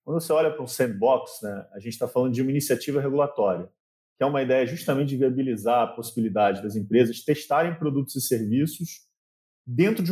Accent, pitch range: Brazilian, 115-150 Hz